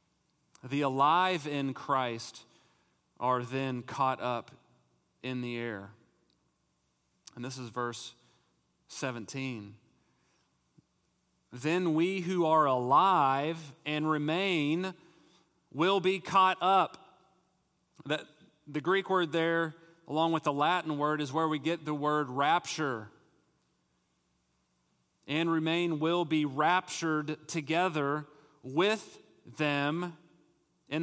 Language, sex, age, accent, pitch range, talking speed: English, male, 40-59, American, 130-180 Hz, 105 wpm